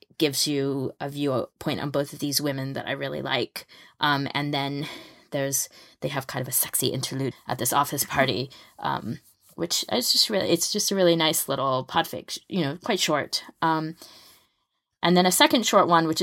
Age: 20-39